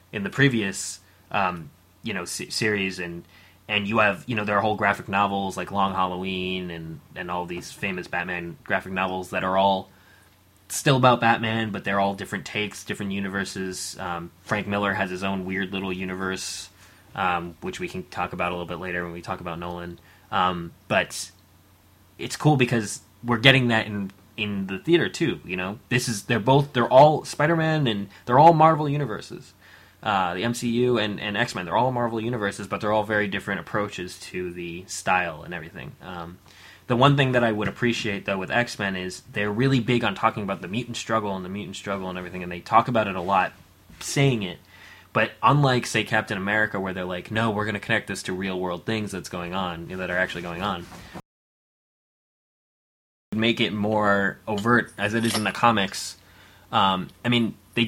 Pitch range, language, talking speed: 95-115 Hz, English, 195 wpm